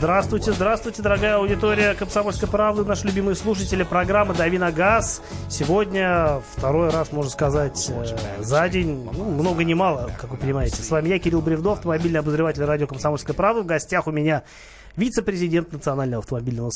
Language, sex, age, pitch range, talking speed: Russian, male, 30-49, 130-185 Hz, 150 wpm